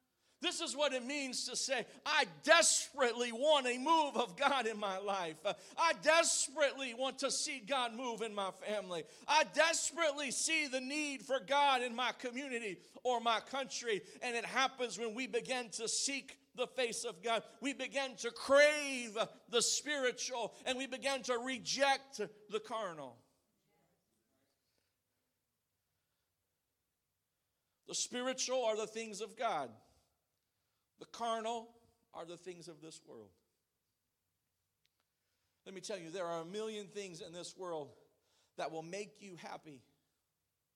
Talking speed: 145 wpm